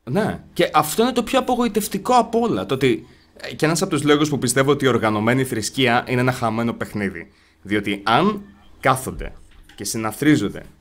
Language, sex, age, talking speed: Greek, male, 20-39, 170 wpm